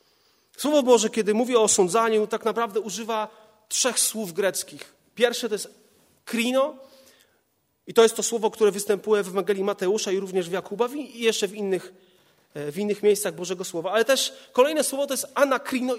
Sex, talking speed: male, 170 wpm